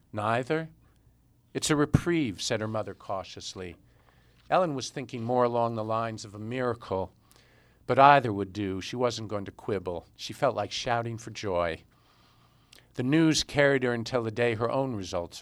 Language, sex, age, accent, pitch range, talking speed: English, male, 50-69, American, 105-130 Hz, 165 wpm